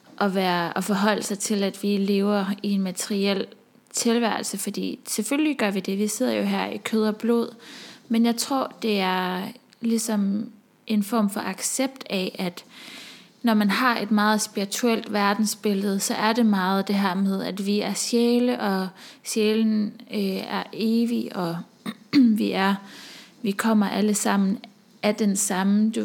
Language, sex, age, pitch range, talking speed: English, female, 20-39, 200-230 Hz, 165 wpm